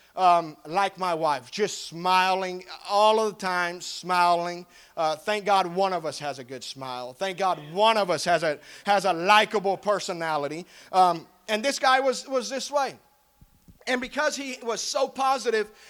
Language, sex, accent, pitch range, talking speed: English, male, American, 185-240 Hz, 175 wpm